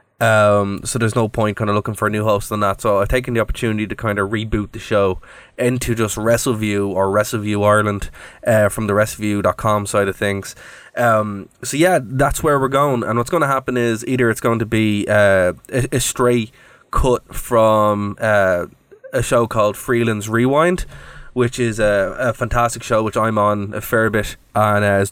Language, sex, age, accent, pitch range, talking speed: English, male, 20-39, Irish, 105-115 Hz, 200 wpm